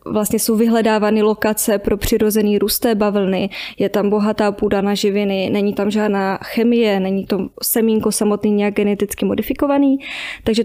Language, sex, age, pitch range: Czech, female, 20-39, 205-225 Hz